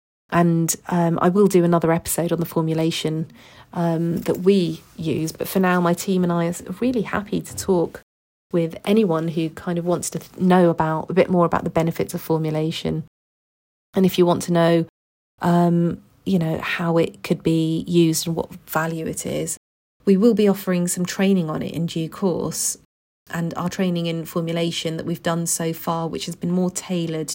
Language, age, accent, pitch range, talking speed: English, 40-59, British, 160-185 Hz, 195 wpm